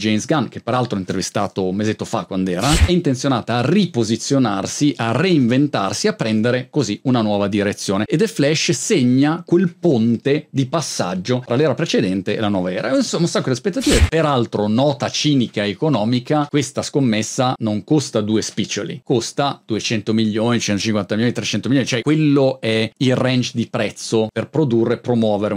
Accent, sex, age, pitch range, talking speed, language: native, male, 40-59, 105-145 Hz, 165 wpm, Italian